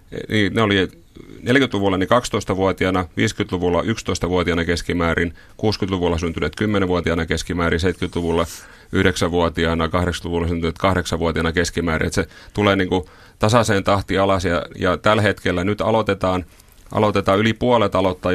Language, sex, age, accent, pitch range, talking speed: Finnish, male, 30-49, native, 85-100 Hz, 120 wpm